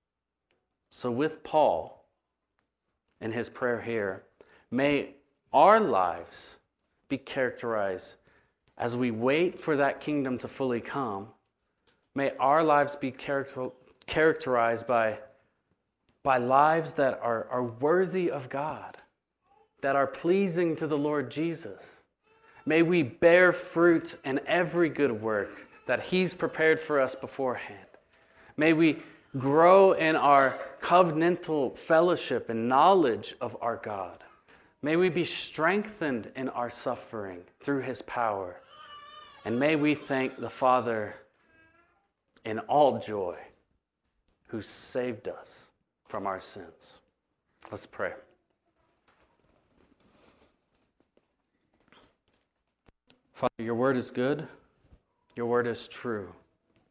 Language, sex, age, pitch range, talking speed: English, male, 30-49, 120-165 Hz, 110 wpm